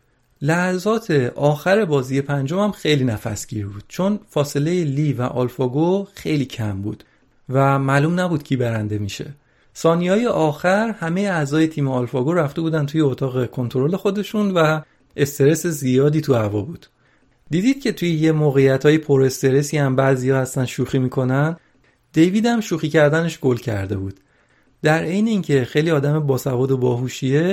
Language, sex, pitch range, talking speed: Persian, male, 130-170 Hz, 150 wpm